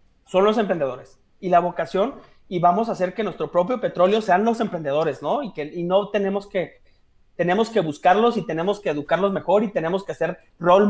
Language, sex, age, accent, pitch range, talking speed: Spanish, male, 30-49, Mexican, 170-205 Hz, 205 wpm